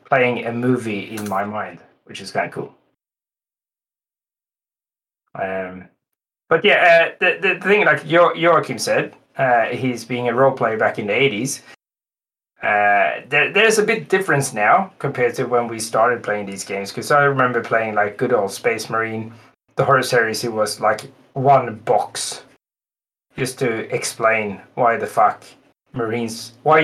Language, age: English, 20-39